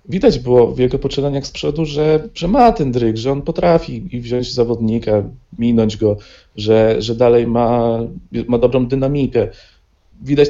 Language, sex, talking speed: Polish, male, 160 wpm